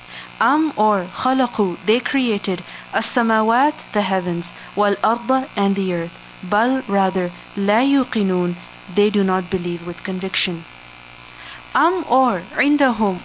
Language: English